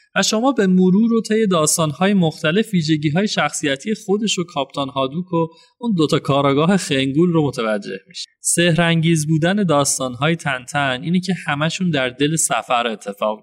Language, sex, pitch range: Persian, male, 140-190 Hz